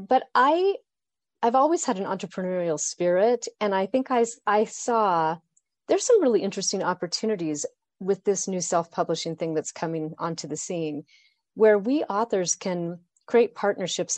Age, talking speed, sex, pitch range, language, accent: 30-49, 150 wpm, female, 170-220 Hz, English, American